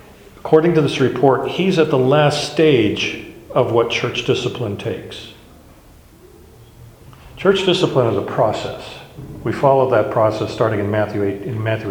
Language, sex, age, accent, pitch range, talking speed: English, male, 50-69, American, 110-135 Hz, 130 wpm